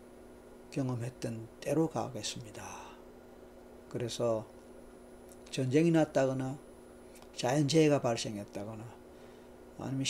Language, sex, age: Korean, male, 40-59